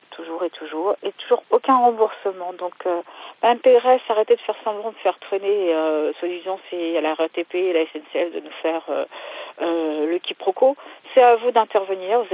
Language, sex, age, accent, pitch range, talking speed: French, female, 50-69, French, 180-265 Hz, 185 wpm